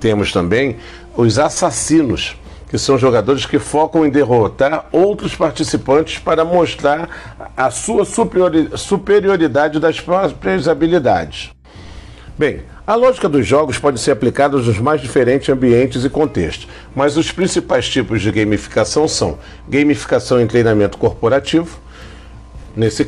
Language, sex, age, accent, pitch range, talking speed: Portuguese, male, 50-69, Brazilian, 125-155 Hz, 120 wpm